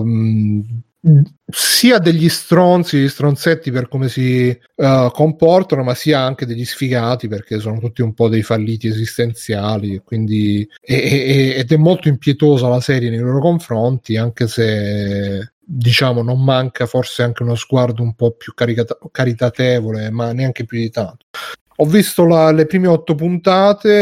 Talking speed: 150 wpm